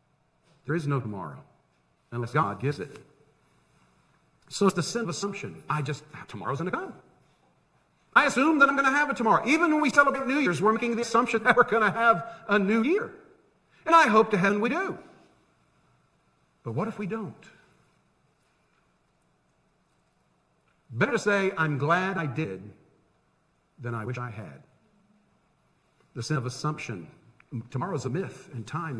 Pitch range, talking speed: 140-220 Hz, 165 wpm